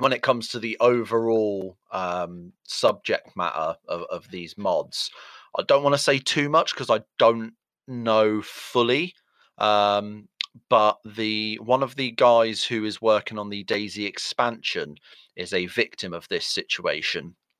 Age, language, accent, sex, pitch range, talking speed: 30-49, English, British, male, 90-115 Hz, 155 wpm